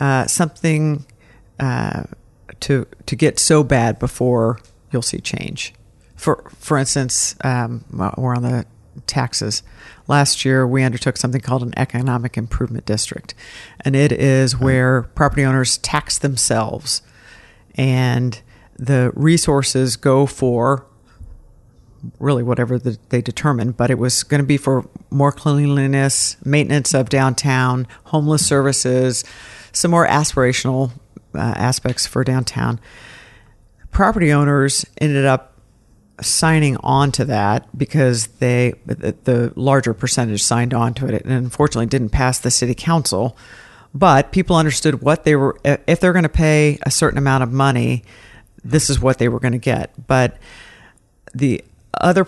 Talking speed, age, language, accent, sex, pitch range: 140 wpm, 50-69, English, American, female, 120-145 Hz